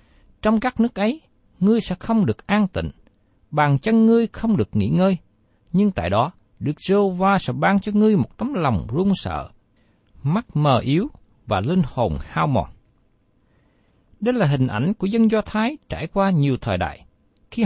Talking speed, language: 185 wpm, Vietnamese